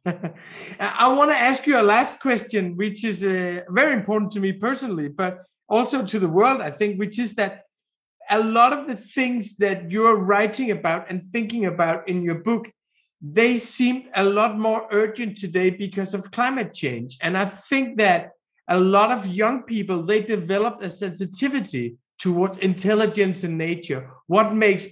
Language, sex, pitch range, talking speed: English, male, 180-225 Hz, 170 wpm